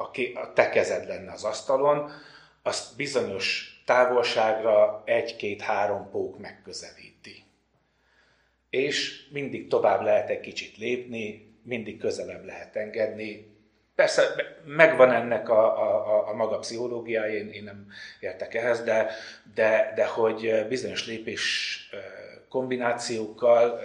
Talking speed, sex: 110 wpm, male